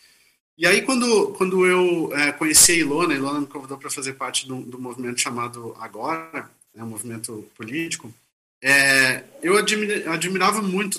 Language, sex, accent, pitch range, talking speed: Portuguese, male, Brazilian, 145-190 Hz, 145 wpm